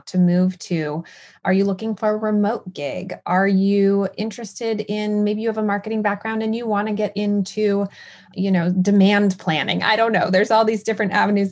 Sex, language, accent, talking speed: female, English, American, 200 wpm